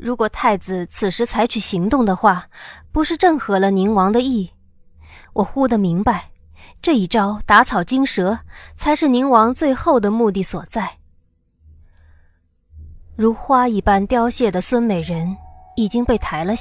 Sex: female